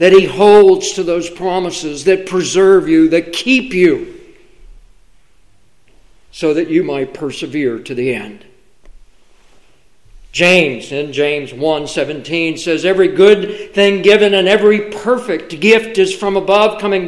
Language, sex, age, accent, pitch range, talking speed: English, male, 50-69, American, 175-225 Hz, 130 wpm